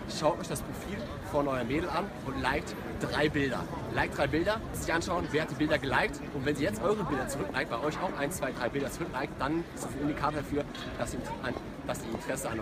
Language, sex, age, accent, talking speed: German, male, 30-49, German, 225 wpm